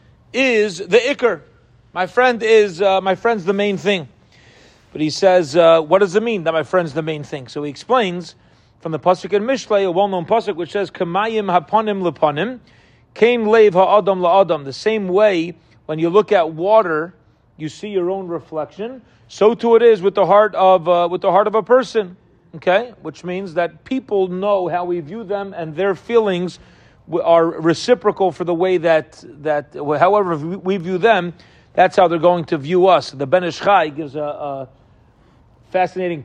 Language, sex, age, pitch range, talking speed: English, male, 40-59, 150-195 Hz, 180 wpm